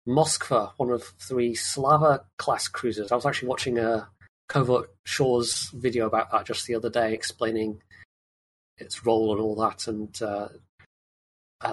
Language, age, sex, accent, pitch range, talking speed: English, 30-49, male, British, 110-130 Hz, 155 wpm